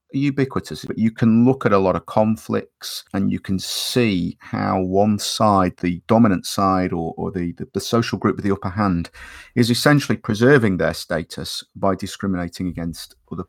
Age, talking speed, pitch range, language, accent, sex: 40-59, 180 wpm, 90-110 Hz, English, British, male